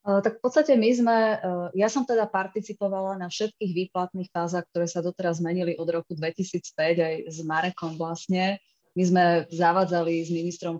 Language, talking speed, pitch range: Slovak, 160 wpm, 160-180 Hz